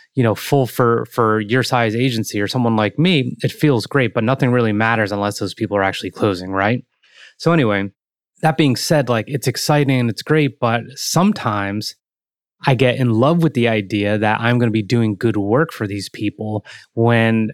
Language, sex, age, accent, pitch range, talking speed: English, male, 20-39, American, 105-135 Hz, 200 wpm